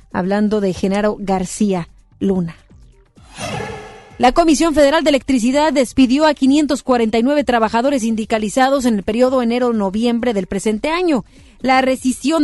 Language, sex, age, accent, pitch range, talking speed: Spanish, female, 40-59, Mexican, 205-255 Hz, 115 wpm